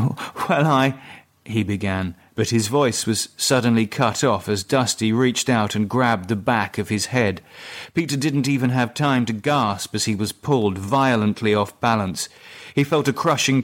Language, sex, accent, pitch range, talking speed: English, male, British, 110-145 Hz, 175 wpm